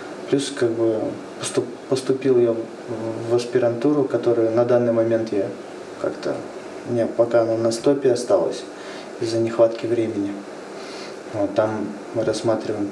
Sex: male